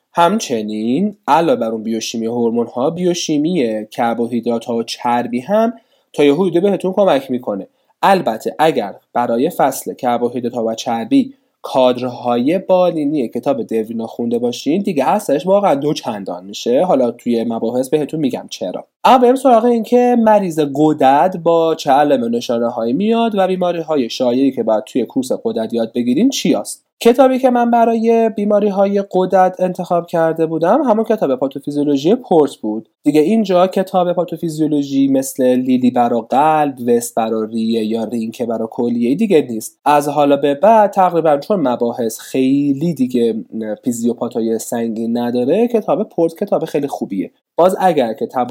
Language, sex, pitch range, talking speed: Persian, male, 120-185 Hz, 145 wpm